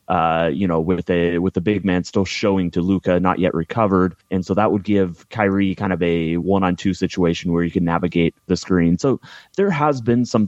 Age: 30-49